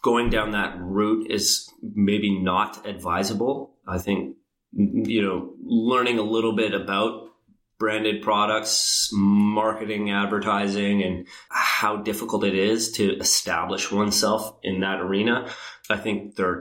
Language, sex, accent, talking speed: English, male, American, 125 wpm